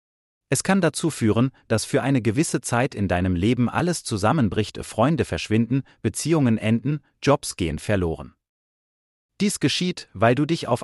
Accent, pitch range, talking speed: German, 100-145 Hz, 150 wpm